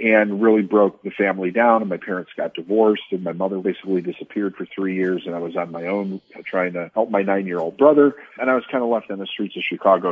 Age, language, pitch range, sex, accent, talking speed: 50-69, English, 95-120 Hz, male, American, 250 wpm